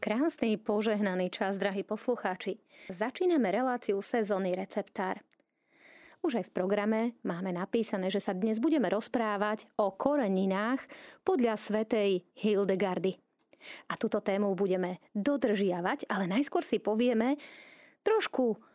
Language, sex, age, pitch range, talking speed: Slovak, female, 30-49, 195-265 Hz, 110 wpm